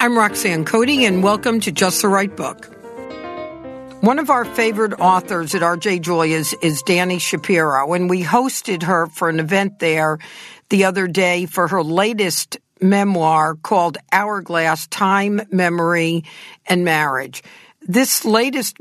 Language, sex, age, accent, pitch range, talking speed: English, female, 60-79, American, 170-210 Hz, 145 wpm